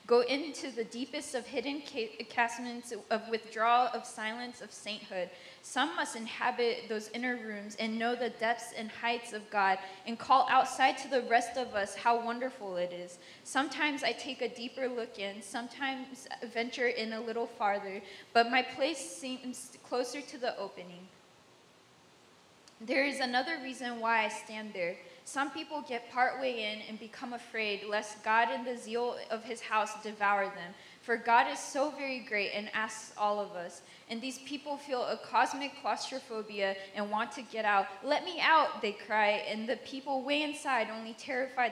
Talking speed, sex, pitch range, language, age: 175 wpm, female, 210-255 Hz, English, 10-29